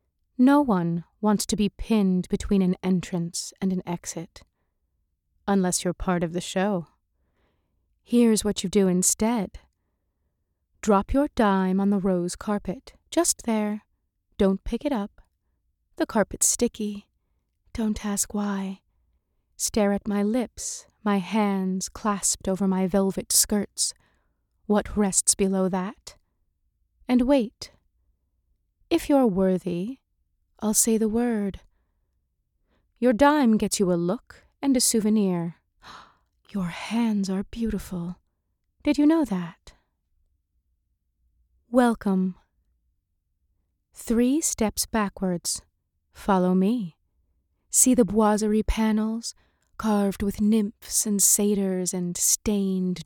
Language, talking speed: English, 115 wpm